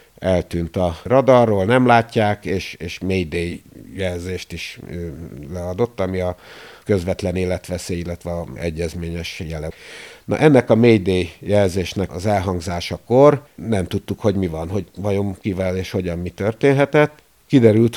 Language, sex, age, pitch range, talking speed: Hungarian, male, 50-69, 85-100 Hz, 135 wpm